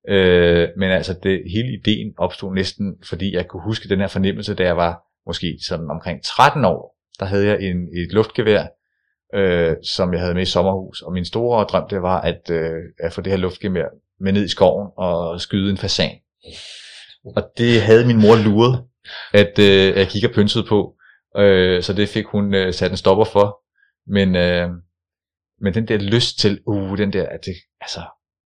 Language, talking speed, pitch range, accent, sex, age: Danish, 195 wpm, 90-105 Hz, native, male, 30-49